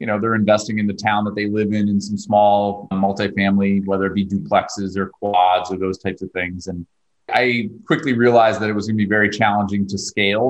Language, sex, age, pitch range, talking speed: English, male, 30-49, 100-120 Hz, 230 wpm